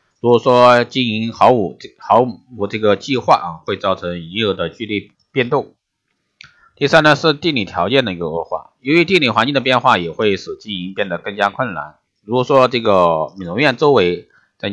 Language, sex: Chinese, male